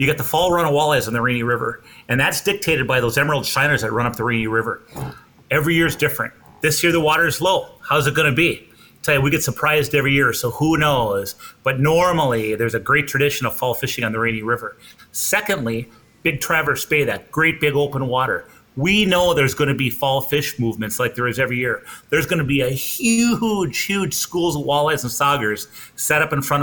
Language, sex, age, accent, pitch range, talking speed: English, male, 30-49, American, 125-155 Hz, 225 wpm